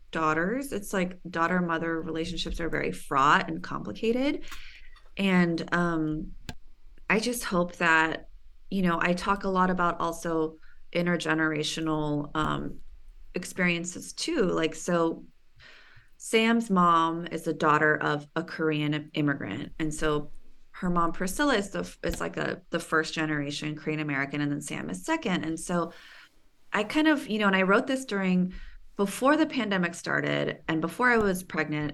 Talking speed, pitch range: 150 wpm, 155-190 Hz